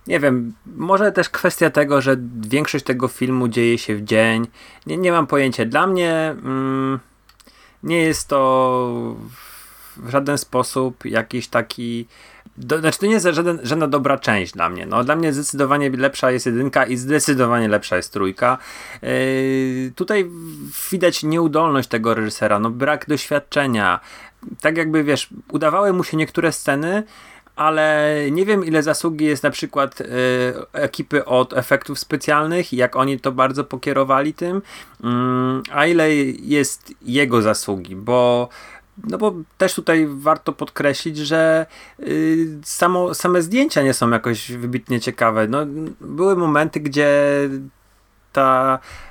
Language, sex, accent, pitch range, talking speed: Polish, male, native, 125-160 Hz, 135 wpm